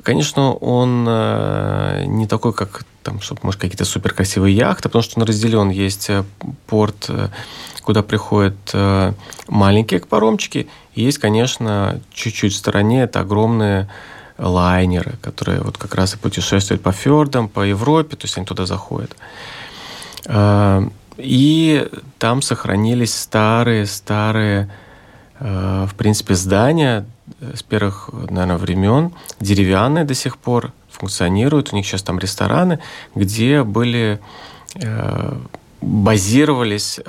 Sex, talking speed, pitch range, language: male, 110 wpm, 100-125 Hz, Russian